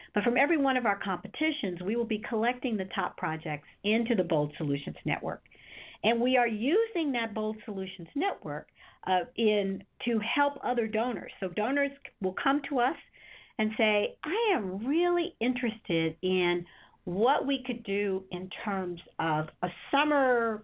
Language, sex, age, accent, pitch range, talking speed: English, female, 50-69, American, 180-250 Hz, 155 wpm